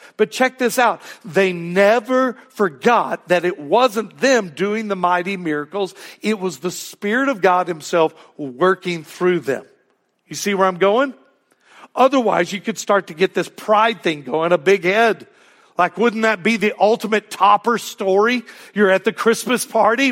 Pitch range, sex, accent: 155-215 Hz, male, American